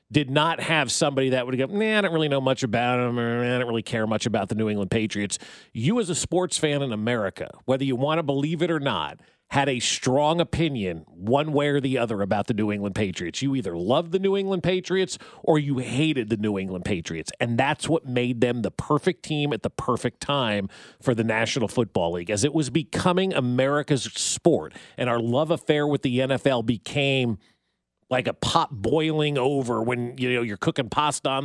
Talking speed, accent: 215 wpm, American